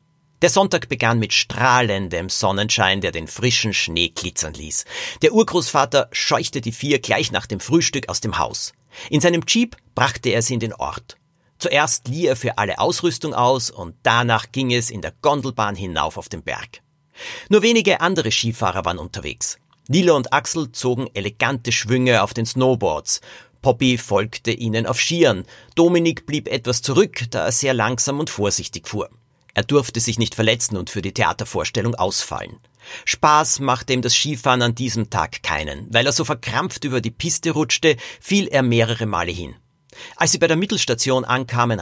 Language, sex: German, male